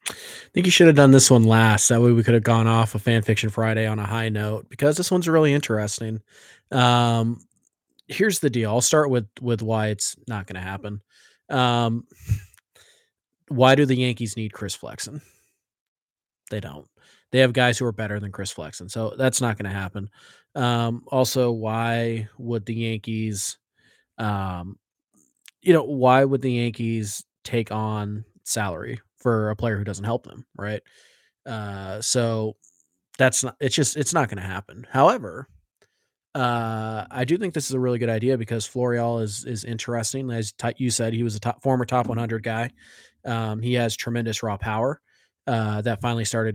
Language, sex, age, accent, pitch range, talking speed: English, male, 20-39, American, 110-125 Hz, 180 wpm